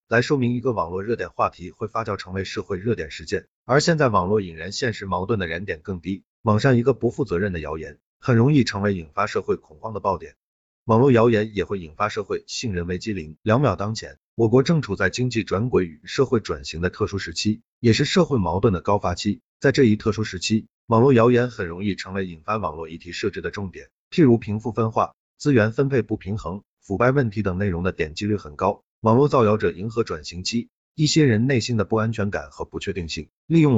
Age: 50-69